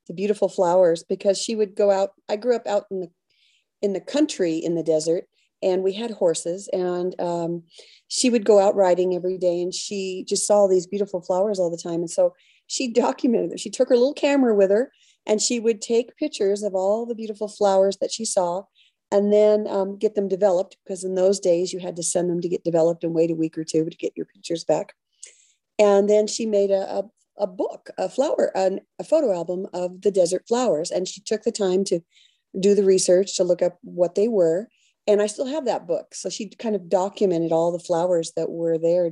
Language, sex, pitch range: English, female, 175-210 Hz